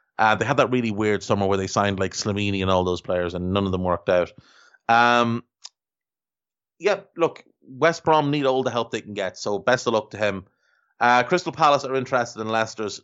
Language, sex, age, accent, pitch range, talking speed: English, male, 30-49, Irish, 105-130 Hz, 215 wpm